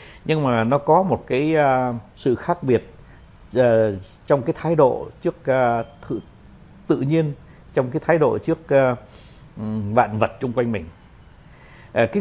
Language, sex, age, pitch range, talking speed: Vietnamese, male, 60-79, 110-155 Hz, 160 wpm